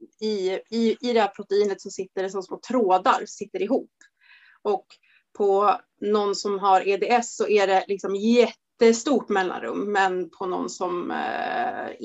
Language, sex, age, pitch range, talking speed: Swedish, female, 30-49, 205-260 Hz, 155 wpm